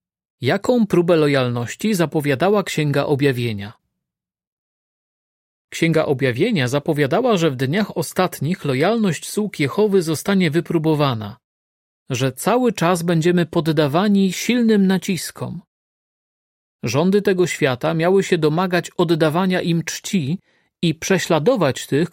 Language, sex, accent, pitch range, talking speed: Polish, male, native, 140-185 Hz, 100 wpm